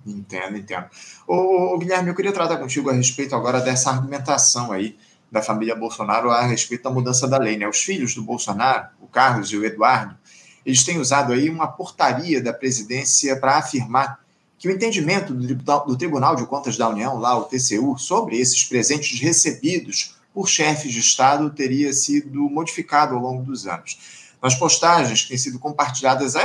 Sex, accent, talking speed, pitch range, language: male, Brazilian, 180 wpm, 125-160 Hz, Portuguese